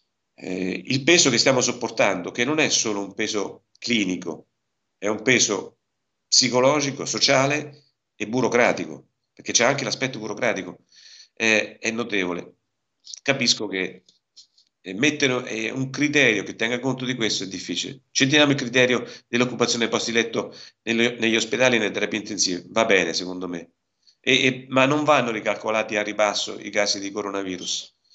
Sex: male